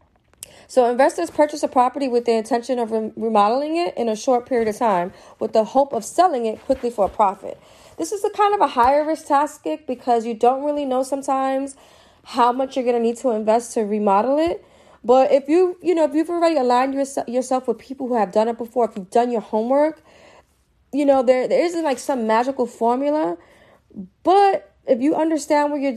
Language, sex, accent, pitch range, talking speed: English, female, American, 225-290 Hz, 210 wpm